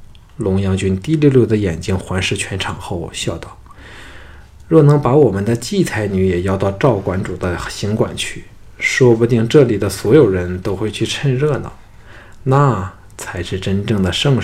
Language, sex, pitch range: Chinese, male, 95-120 Hz